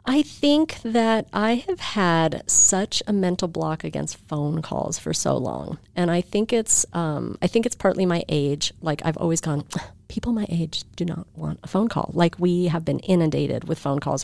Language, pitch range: English, 155-205 Hz